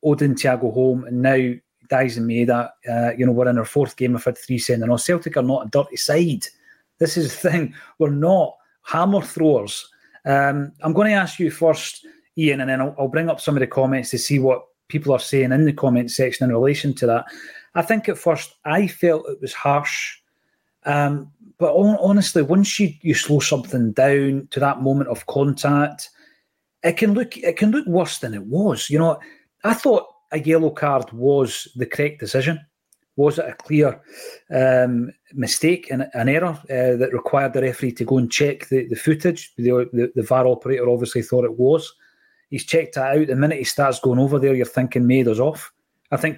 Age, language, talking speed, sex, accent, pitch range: 30-49, English, 210 wpm, male, British, 130-160 Hz